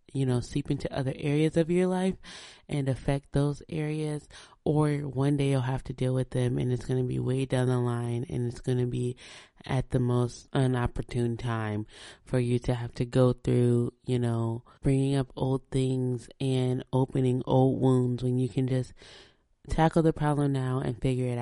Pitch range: 125-140 Hz